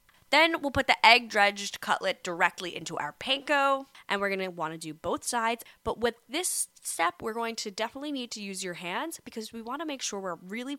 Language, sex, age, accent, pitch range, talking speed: English, female, 10-29, American, 180-240 Hz, 210 wpm